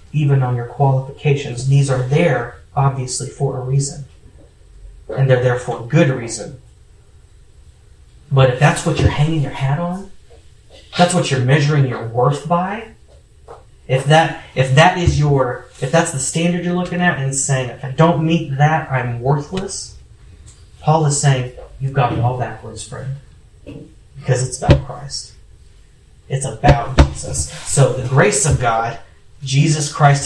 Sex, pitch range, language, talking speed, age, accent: male, 125-145 Hz, English, 155 wpm, 30-49, American